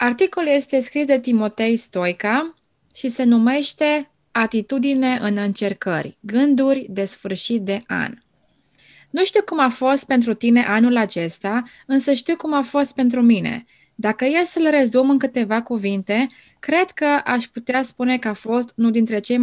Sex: female